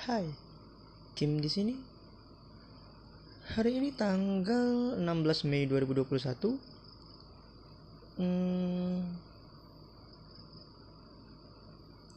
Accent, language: native, Indonesian